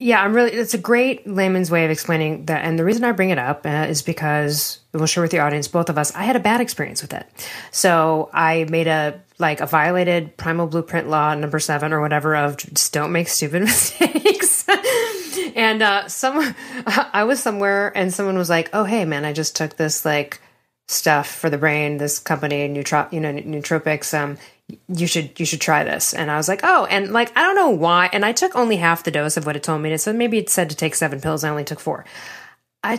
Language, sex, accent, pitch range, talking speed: English, female, American, 155-215 Hz, 235 wpm